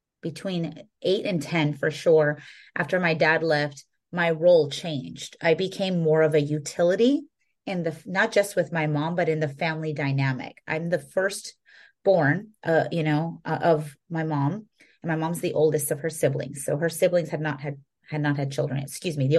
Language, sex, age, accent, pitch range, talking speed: English, female, 30-49, American, 150-180 Hz, 195 wpm